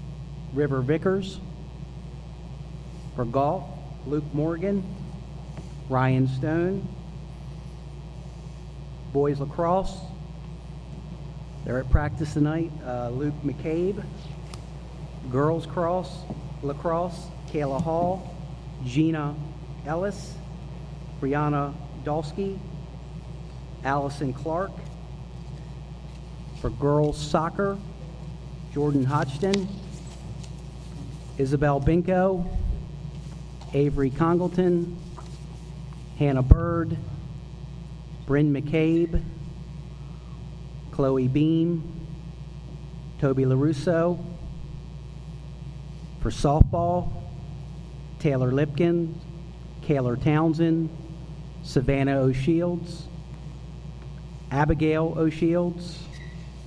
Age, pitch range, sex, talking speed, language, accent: 40-59, 145-160 Hz, male, 60 wpm, English, American